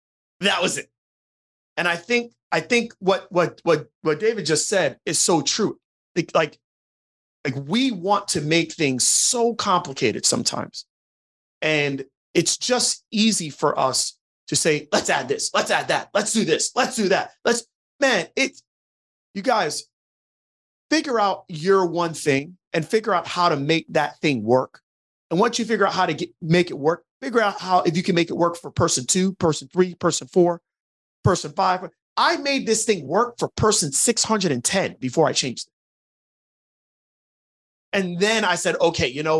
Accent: American